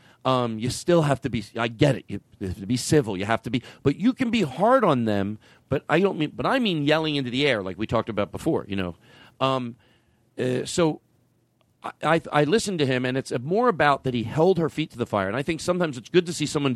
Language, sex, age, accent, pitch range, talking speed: English, male, 40-59, American, 125-180 Hz, 260 wpm